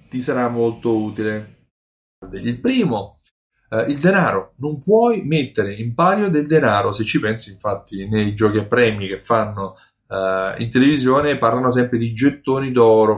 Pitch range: 105-135 Hz